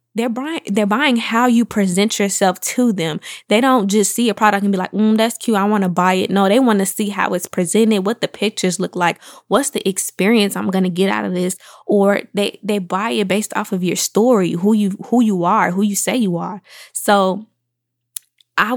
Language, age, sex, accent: English, 20-39, female, American